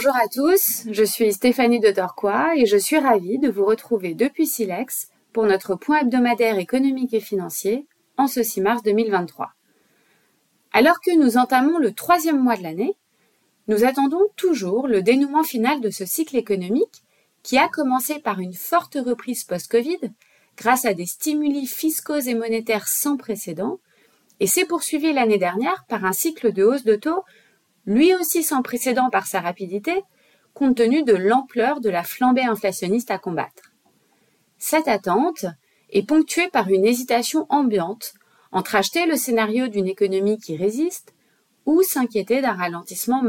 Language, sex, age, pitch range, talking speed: English, female, 30-49, 210-290 Hz, 160 wpm